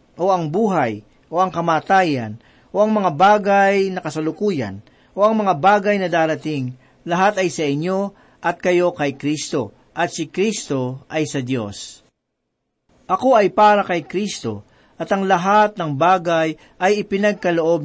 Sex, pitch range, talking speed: male, 145-195 Hz, 150 wpm